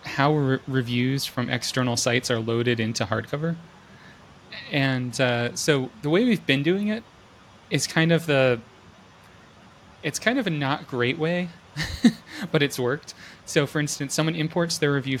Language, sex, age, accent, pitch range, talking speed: English, male, 20-39, American, 110-140 Hz, 160 wpm